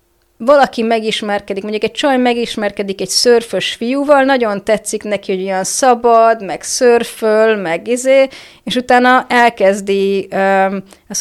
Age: 30-49